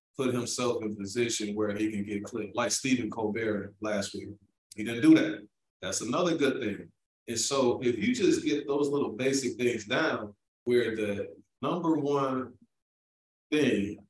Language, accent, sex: English, American, male